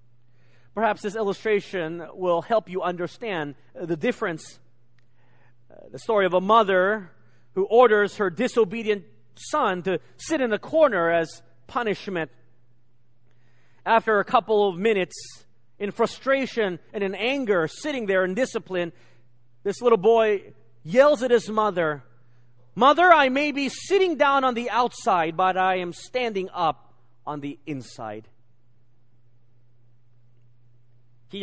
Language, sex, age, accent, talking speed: English, male, 40-59, American, 125 wpm